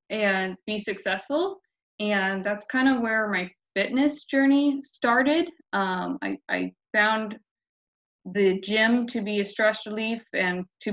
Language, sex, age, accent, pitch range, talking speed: English, female, 20-39, American, 195-230 Hz, 135 wpm